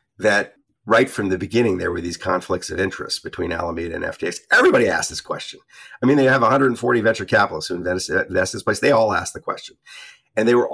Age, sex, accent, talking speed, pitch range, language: 50-69, male, American, 220 wpm, 95-115 Hz, English